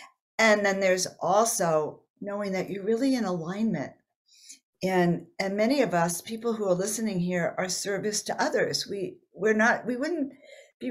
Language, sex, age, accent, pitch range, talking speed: English, female, 50-69, American, 180-220 Hz, 165 wpm